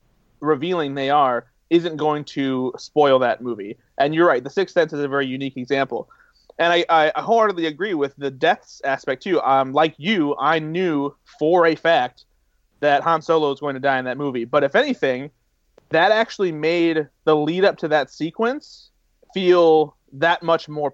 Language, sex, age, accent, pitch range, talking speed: English, male, 30-49, American, 135-170 Hz, 185 wpm